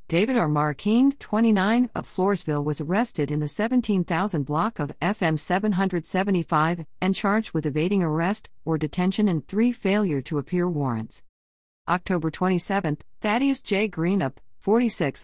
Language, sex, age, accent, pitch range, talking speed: English, female, 50-69, American, 150-195 Hz, 135 wpm